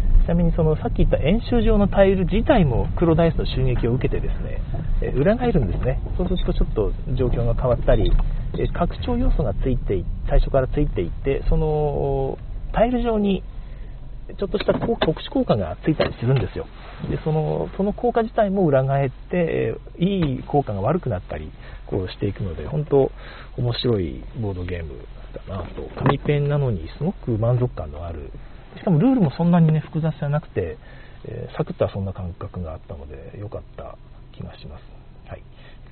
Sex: male